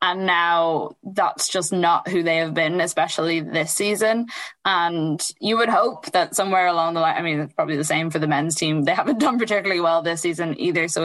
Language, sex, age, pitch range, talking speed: English, female, 10-29, 165-190 Hz, 215 wpm